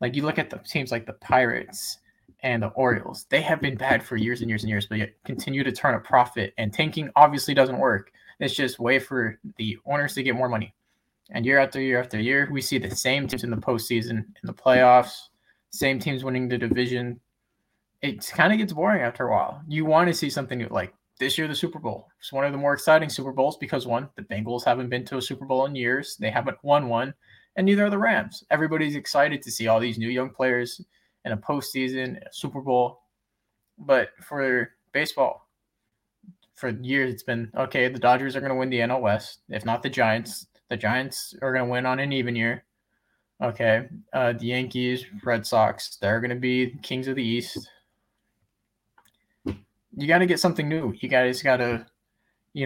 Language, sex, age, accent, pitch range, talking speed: English, male, 20-39, American, 120-140 Hz, 210 wpm